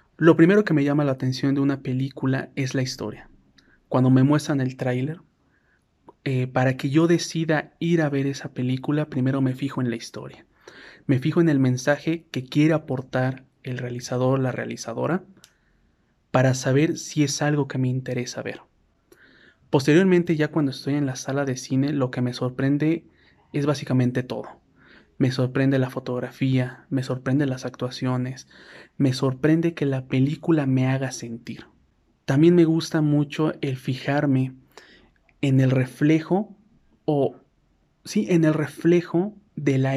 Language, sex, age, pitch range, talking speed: Spanish, male, 30-49, 130-155 Hz, 155 wpm